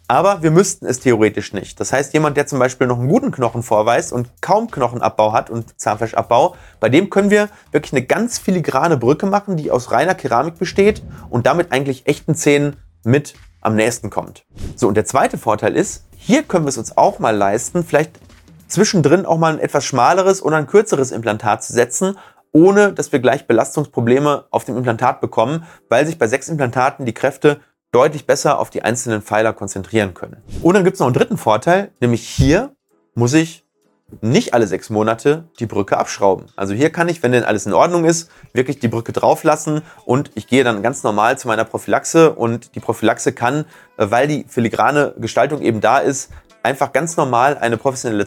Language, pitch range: German, 115-150 Hz